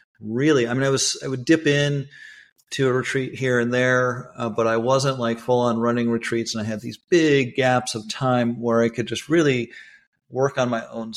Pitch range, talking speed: 115-135 Hz, 215 wpm